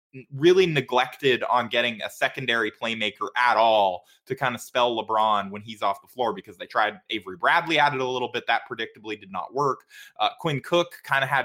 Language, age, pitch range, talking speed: English, 20-39, 110-130 Hz, 210 wpm